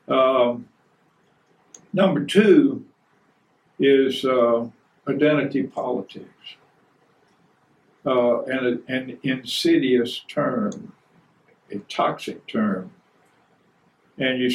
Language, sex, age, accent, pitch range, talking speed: English, male, 60-79, American, 125-150 Hz, 65 wpm